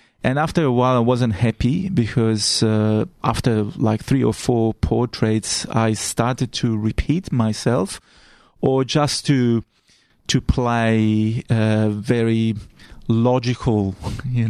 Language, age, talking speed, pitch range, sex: English, 30-49, 120 wpm, 110-125 Hz, male